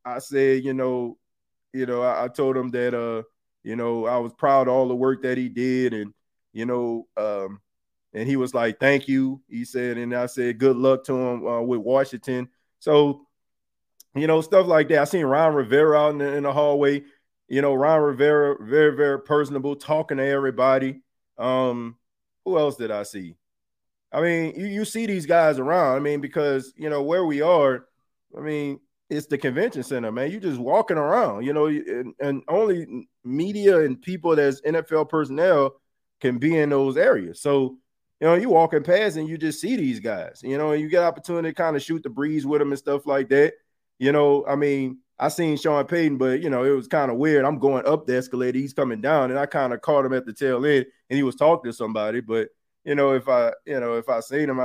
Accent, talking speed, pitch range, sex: American, 220 wpm, 125-150 Hz, male